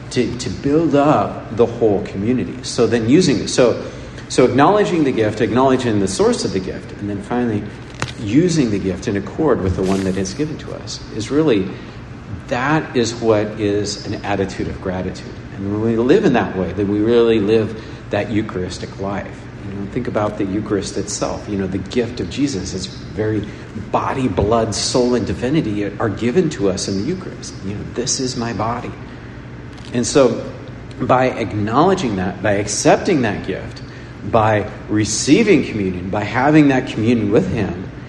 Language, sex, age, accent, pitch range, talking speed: English, male, 50-69, American, 100-125 Hz, 175 wpm